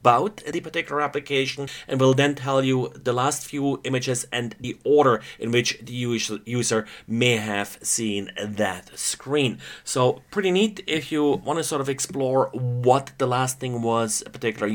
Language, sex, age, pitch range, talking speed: English, male, 30-49, 115-140 Hz, 175 wpm